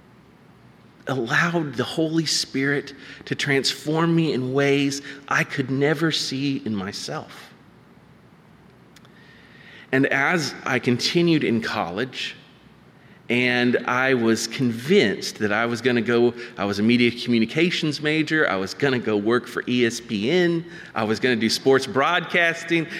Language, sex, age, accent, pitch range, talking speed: English, male, 30-49, American, 115-160 Hz, 135 wpm